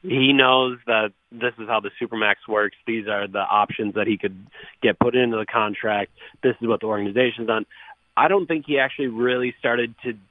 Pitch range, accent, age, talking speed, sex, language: 110-130 Hz, American, 30-49, 205 wpm, male, English